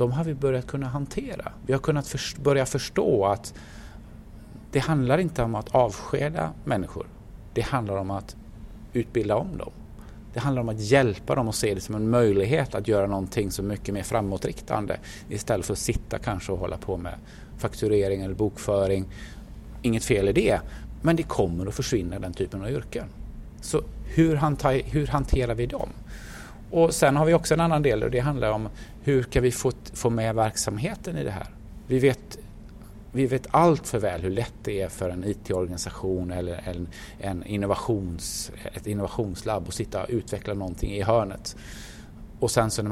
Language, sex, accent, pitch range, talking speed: Swedish, male, native, 100-130 Hz, 180 wpm